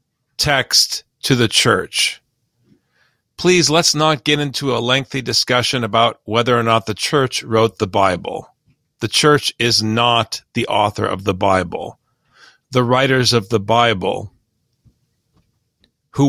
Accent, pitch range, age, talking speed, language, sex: American, 110-145 Hz, 40-59, 135 wpm, English, male